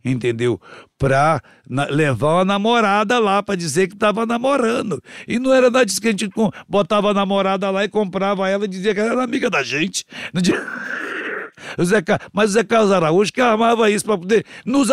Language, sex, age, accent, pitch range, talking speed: Portuguese, male, 60-79, Brazilian, 130-205 Hz, 195 wpm